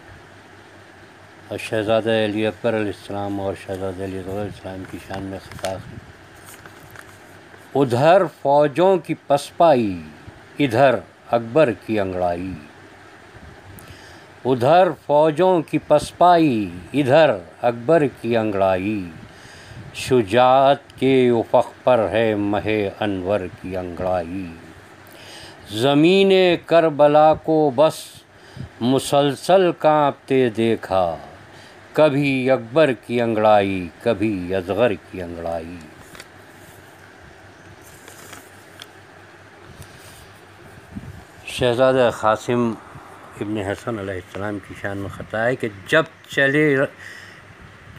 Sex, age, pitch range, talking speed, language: male, 50-69, 95-130 Hz, 85 wpm, Urdu